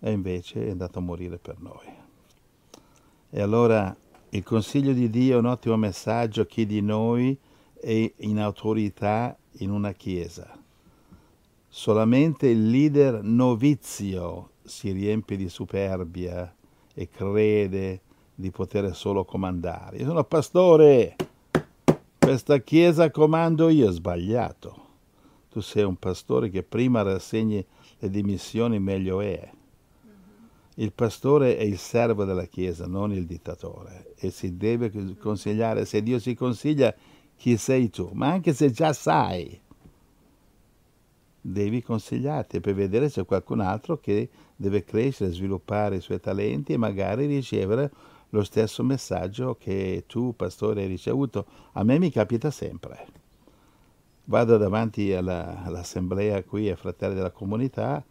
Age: 60-79